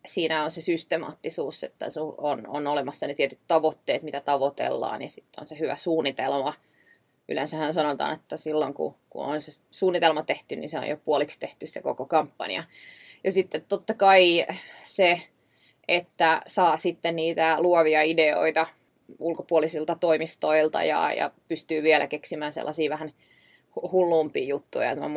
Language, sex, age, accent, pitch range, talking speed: Finnish, female, 20-39, native, 155-175 Hz, 145 wpm